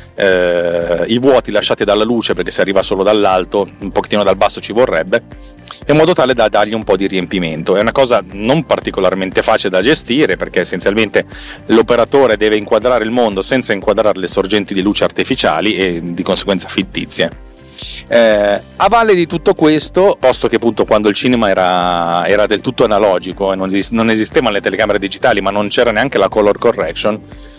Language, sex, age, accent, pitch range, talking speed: Italian, male, 30-49, native, 95-120 Hz, 175 wpm